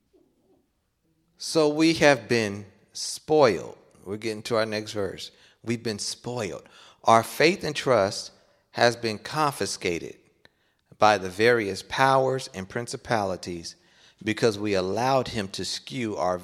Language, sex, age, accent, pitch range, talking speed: English, male, 40-59, American, 105-150 Hz, 125 wpm